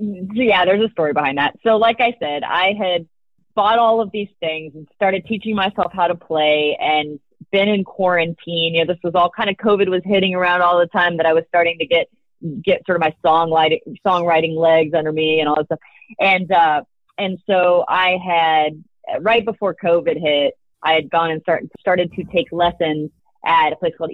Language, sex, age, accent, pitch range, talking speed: English, female, 30-49, American, 160-205 Hz, 205 wpm